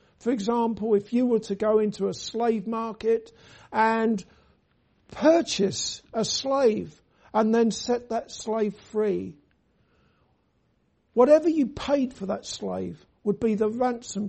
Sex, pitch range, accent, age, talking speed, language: male, 195-235 Hz, British, 60-79, 130 wpm, English